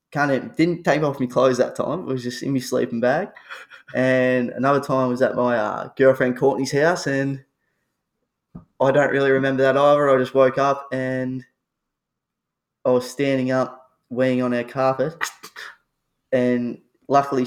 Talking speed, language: 170 wpm, English